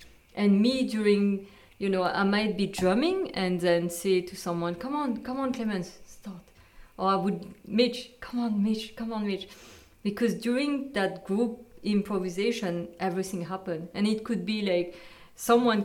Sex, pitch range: female, 175-205 Hz